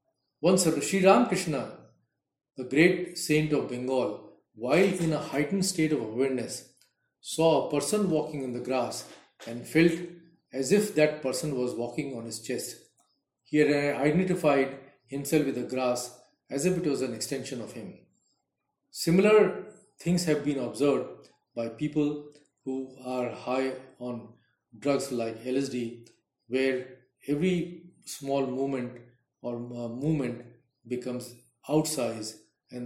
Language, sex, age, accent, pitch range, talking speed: English, male, 40-59, Indian, 125-160 Hz, 130 wpm